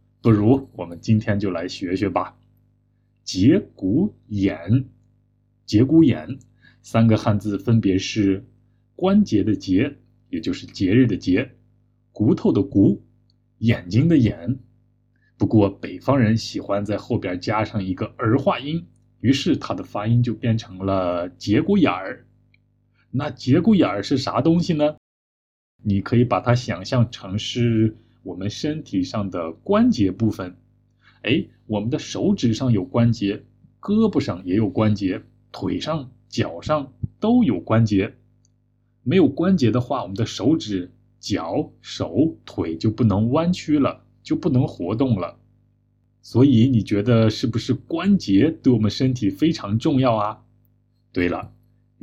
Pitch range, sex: 105-125 Hz, male